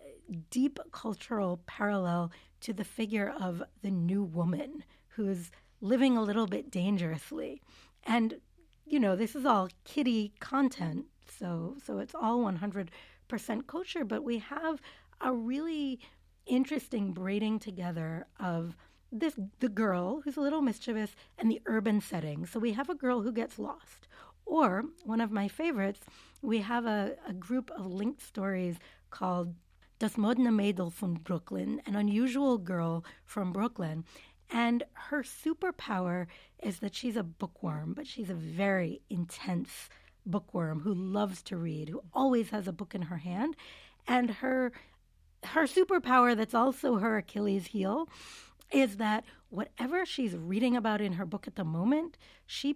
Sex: female